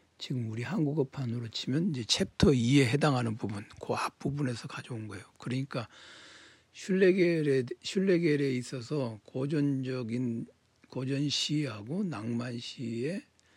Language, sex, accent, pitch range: Korean, male, native, 120-150 Hz